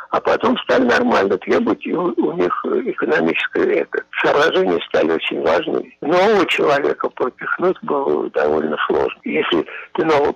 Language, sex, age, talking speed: Russian, male, 60-79, 135 wpm